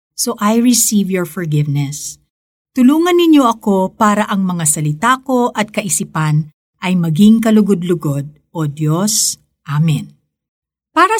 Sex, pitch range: female, 180-255 Hz